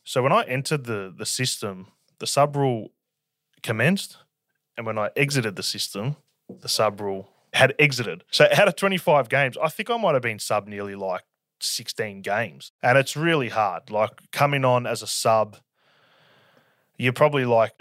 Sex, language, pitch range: male, English, 105-130 Hz